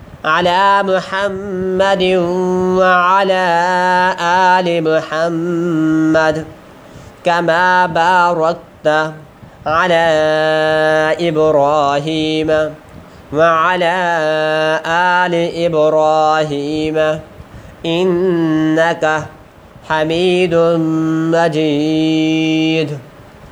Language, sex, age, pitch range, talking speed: Arabic, male, 20-39, 155-175 Hz, 40 wpm